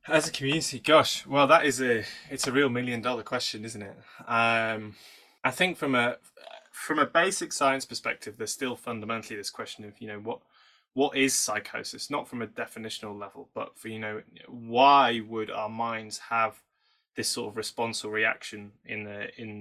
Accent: British